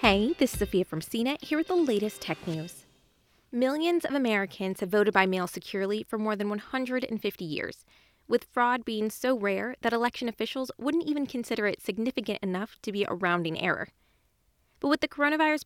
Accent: American